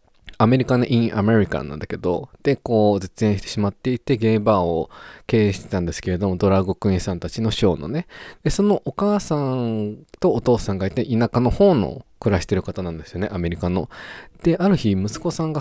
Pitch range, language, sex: 95-130 Hz, Japanese, male